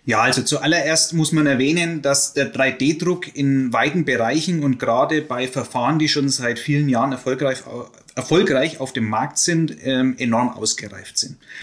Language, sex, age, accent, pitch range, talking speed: German, male, 30-49, German, 135-165 Hz, 150 wpm